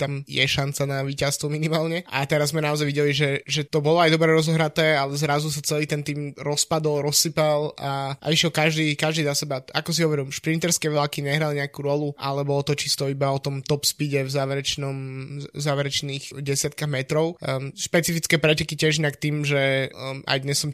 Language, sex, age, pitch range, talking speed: Slovak, male, 20-39, 140-150 Hz, 185 wpm